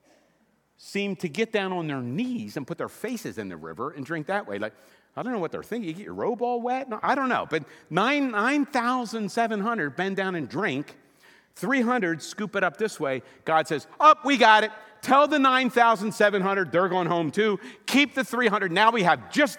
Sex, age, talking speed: male, 50-69, 210 wpm